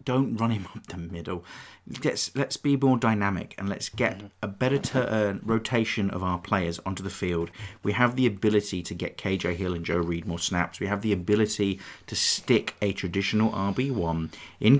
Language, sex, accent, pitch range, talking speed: English, male, British, 90-115 Hz, 190 wpm